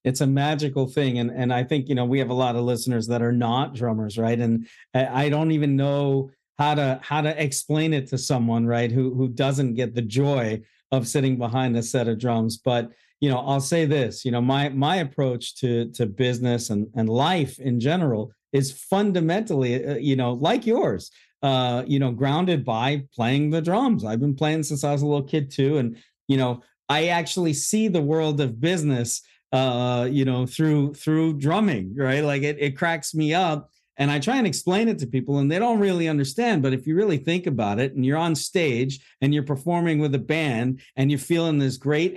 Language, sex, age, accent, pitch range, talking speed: English, male, 50-69, American, 130-155 Hz, 210 wpm